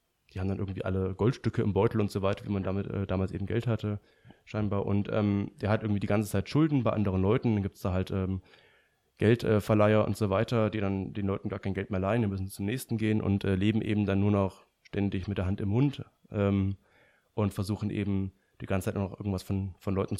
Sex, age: male, 20-39